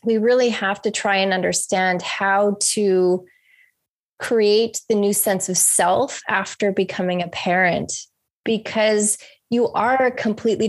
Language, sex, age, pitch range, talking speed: English, female, 20-39, 190-230 Hz, 130 wpm